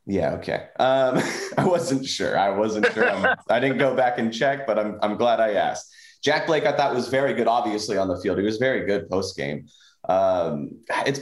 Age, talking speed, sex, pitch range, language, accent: 30-49, 215 wpm, male, 100-130 Hz, English, American